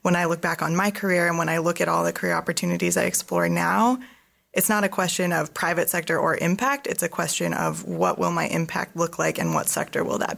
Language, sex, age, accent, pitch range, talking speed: English, female, 20-39, American, 170-200 Hz, 250 wpm